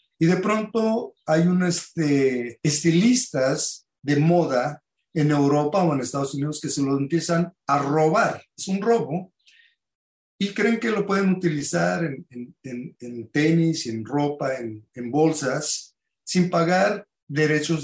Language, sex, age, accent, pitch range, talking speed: English, male, 50-69, Mexican, 145-180 Hz, 145 wpm